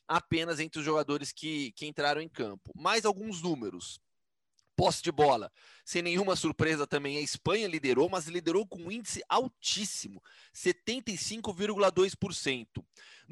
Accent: Brazilian